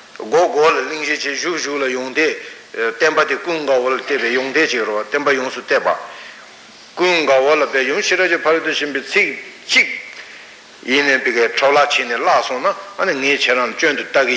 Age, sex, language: 60-79, male, Italian